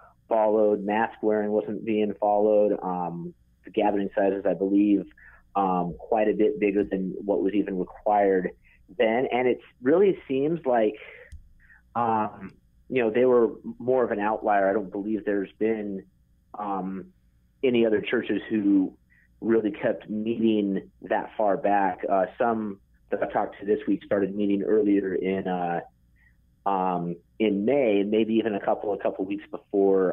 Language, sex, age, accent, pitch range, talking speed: English, male, 30-49, American, 95-110 Hz, 155 wpm